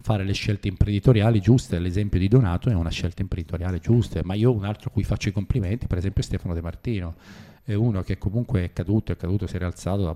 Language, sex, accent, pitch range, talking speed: Italian, male, native, 90-110 Hz, 230 wpm